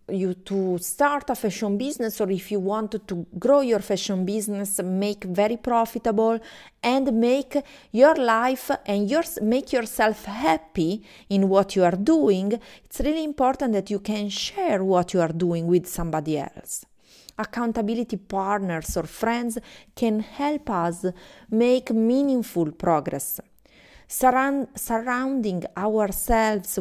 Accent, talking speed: Italian, 130 wpm